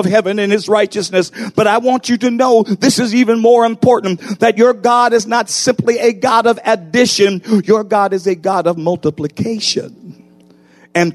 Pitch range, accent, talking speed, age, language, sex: 185-255 Hz, American, 180 wpm, 50-69, English, male